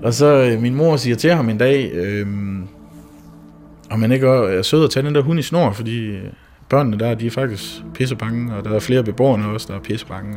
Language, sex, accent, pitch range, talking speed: Danish, male, native, 105-140 Hz, 220 wpm